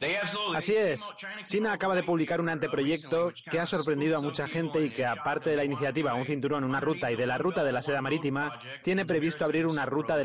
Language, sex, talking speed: Spanish, male, 225 wpm